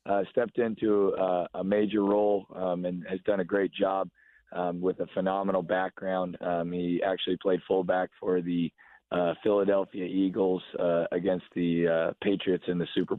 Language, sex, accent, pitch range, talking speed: English, male, American, 85-95 Hz, 170 wpm